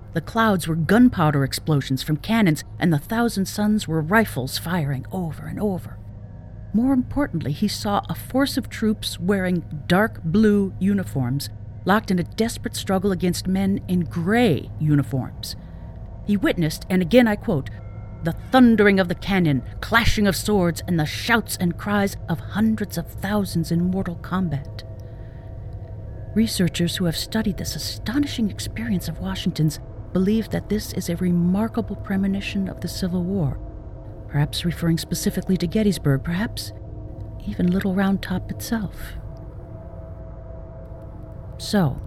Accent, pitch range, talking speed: American, 130-210 Hz, 140 wpm